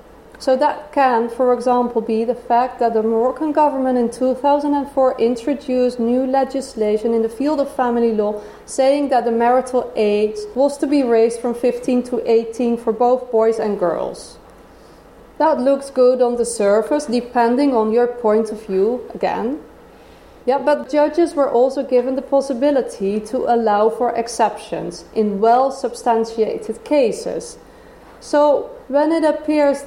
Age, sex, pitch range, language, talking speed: 30-49, female, 230-275 Hz, English, 150 wpm